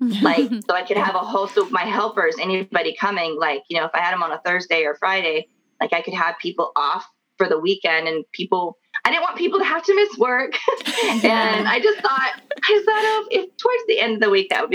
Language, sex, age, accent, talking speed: English, female, 20-39, American, 245 wpm